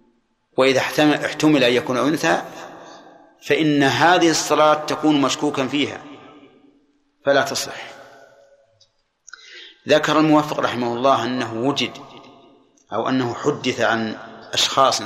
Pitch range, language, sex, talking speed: 130-155 Hz, Arabic, male, 100 wpm